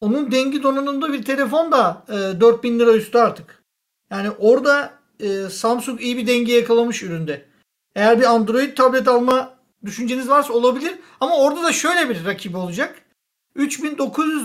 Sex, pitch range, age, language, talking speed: male, 225-275 Hz, 50-69, Turkish, 150 wpm